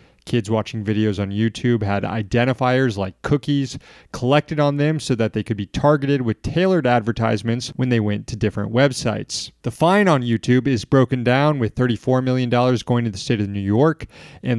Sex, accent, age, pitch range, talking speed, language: male, American, 30-49, 115-145 Hz, 185 wpm, English